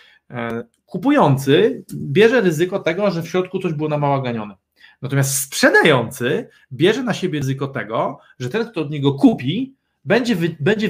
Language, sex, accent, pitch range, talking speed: Polish, male, native, 140-175 Hz, 150 wpm